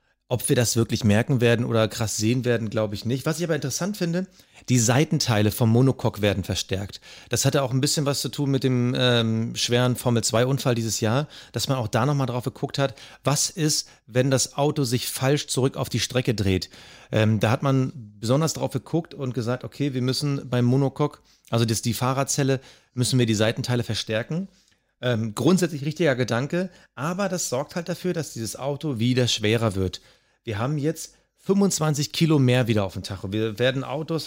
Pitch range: 115-145 Hz